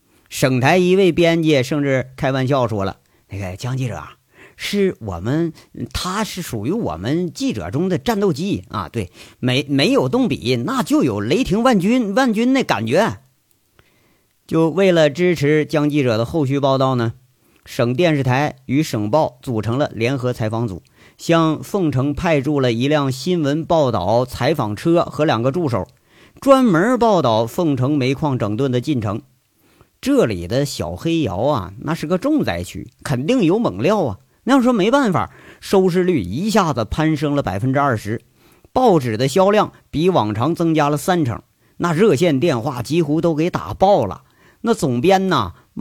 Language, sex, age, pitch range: Chinese, male, 50-69, 115-170 Hz